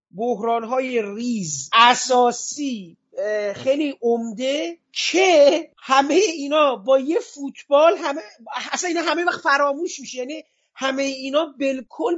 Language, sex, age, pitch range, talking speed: Persian, male, 40-59, 235-290 Hz, 110 wpm